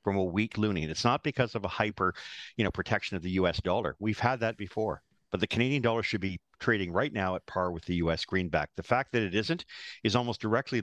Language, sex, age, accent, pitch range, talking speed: English, male, 50-69, American, 95-120 Hz, 250 wpm